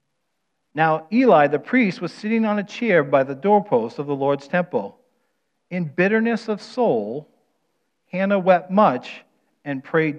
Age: 50-69